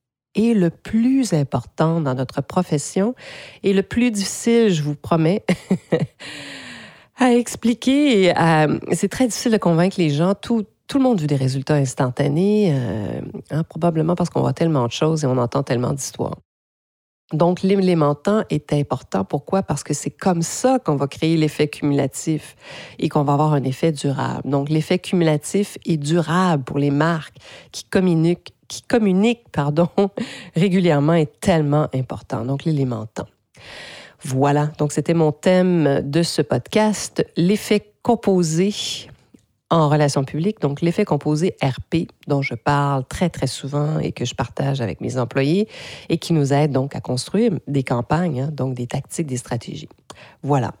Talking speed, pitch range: 160 wpm, 140-190 Hz